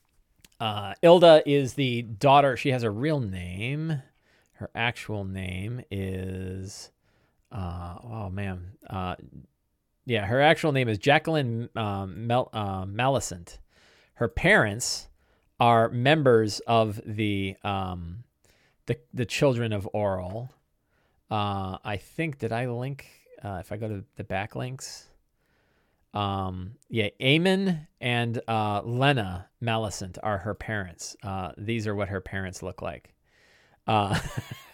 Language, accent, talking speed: English, American, 125 wpm